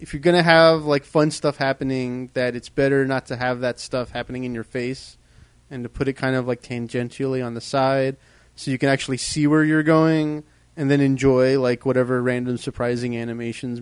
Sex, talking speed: male, 210 wpm